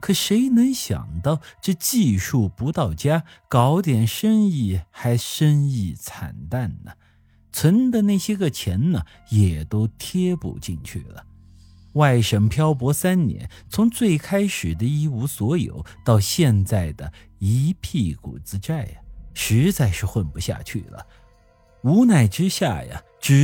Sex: male